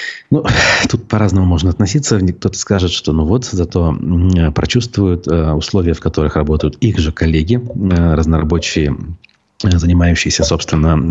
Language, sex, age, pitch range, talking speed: Russian, male, 30-49, 80-100 Hz, 115 wpm